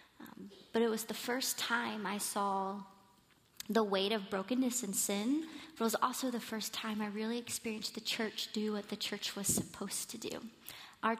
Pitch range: 200-235 Hz